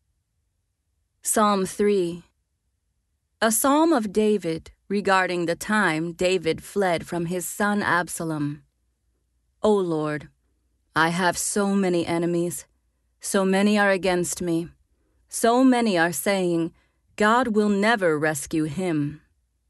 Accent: American